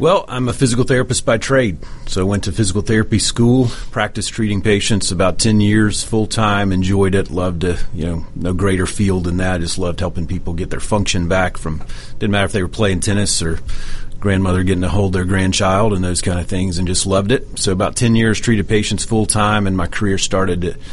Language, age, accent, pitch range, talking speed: English, 40-59, American, 90-110 Hz, 220 wpm